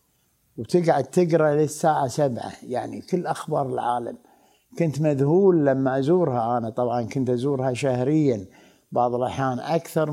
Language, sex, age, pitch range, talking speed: Arabic, male, 60-79, 125-145 Hz, 120 wpm